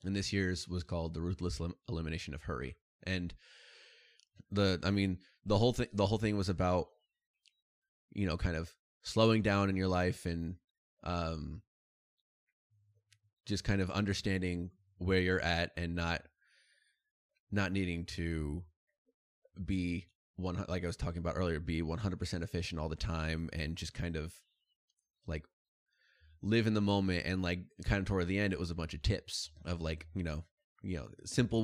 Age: 20-39